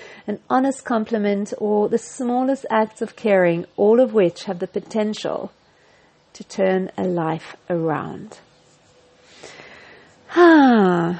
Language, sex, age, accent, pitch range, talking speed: English, female, 40-59, British, 210-275 Hz, 115 wpm